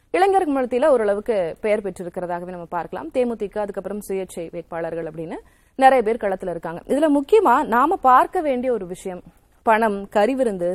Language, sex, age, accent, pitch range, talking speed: Tamil, female, 30-49, native, 190-265 Hz, 145 wpm